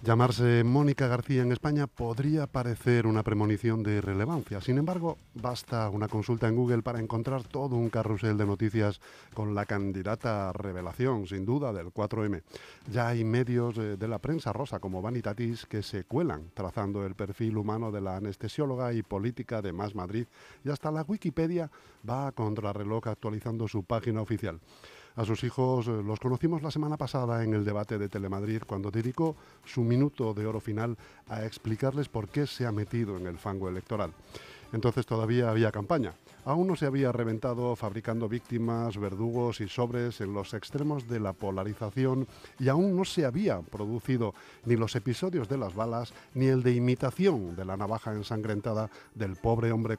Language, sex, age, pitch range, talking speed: Spanish, male, 40-59, 105-125 Hz, 170 wpm